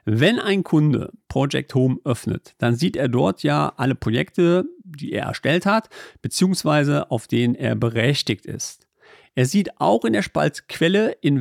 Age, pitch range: 50-69, 120-170 Hz